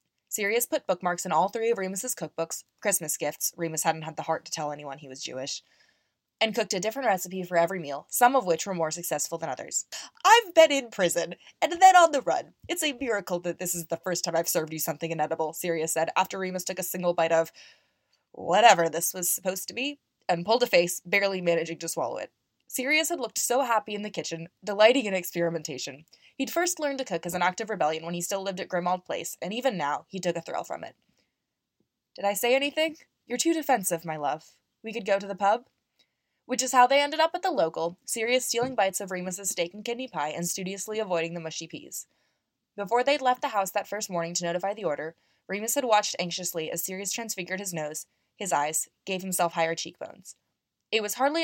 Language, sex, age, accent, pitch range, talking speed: English, female, 20-39, American, 165-230 Hz, 225 wpm